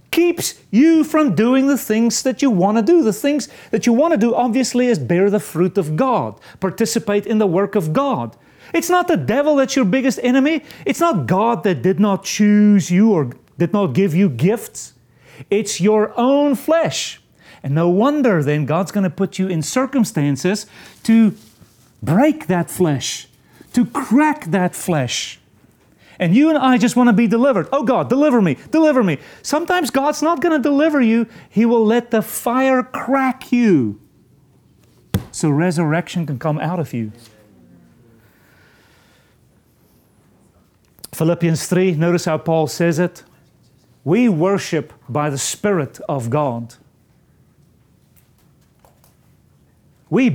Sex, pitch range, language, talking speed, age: male, 155-255 Hz, English, 150 wpm, 40-59